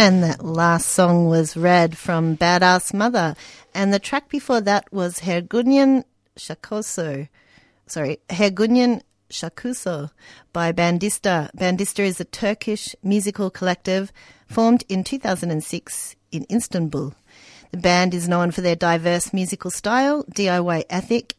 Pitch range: 165-210 Hz